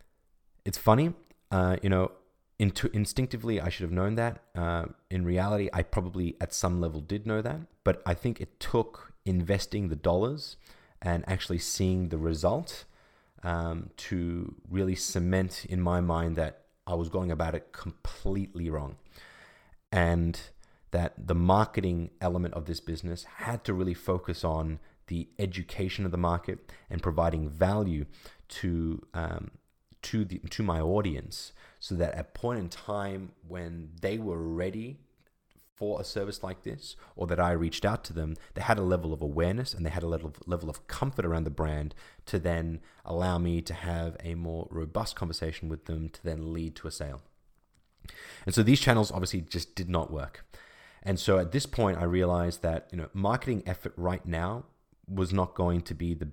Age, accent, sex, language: 30-49, Australian, male, English